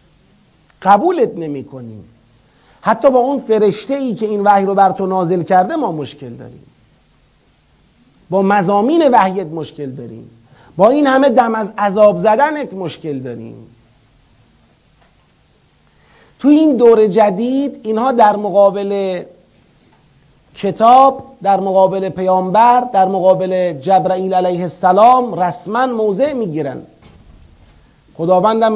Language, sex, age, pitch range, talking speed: Persian, male, 40-59, 165-230 Hz, 110 wpm